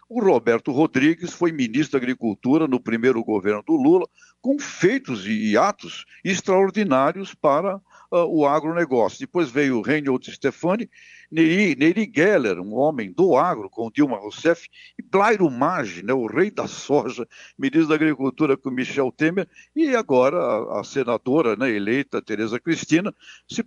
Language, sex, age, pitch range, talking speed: Portuguese, male, 60-79, 130-190 Hz, 150 wpm